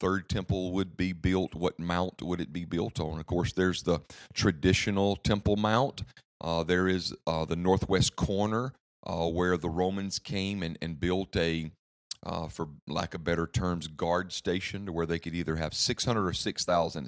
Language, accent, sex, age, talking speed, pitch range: English, American, male, 40-59, 185 wpm, 80-95 Hz